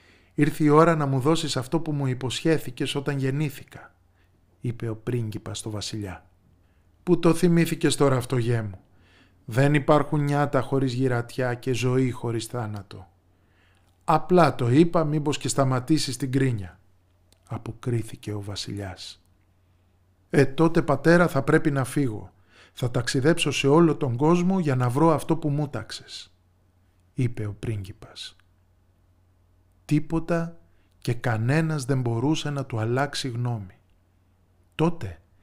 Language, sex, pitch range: Greek, male, 95-145 Hz